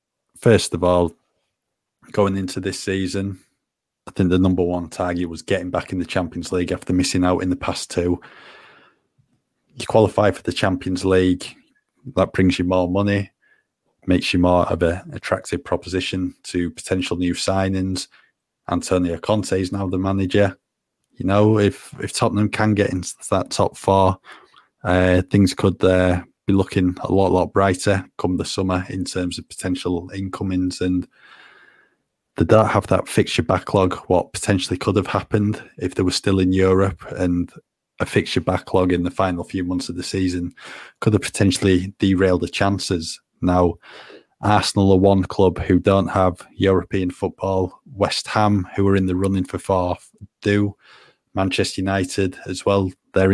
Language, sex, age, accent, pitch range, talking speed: English, male, 20-39, British, 90-100 Hz, 165 wpm